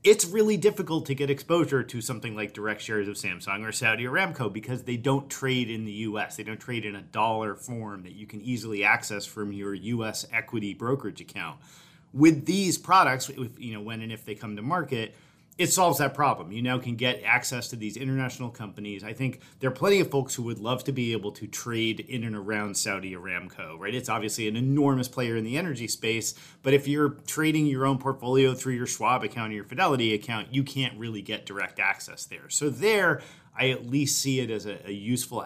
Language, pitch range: English, 110-140 Hz